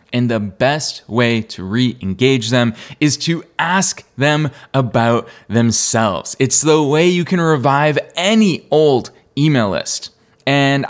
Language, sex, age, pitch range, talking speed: English, male, 20-39, 120-180 Hz, 130 wpm